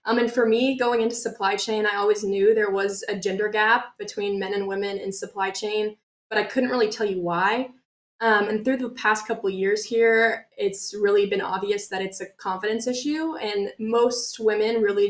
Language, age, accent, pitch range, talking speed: English, 10-29, American, 195-225 Hz, 210 wpm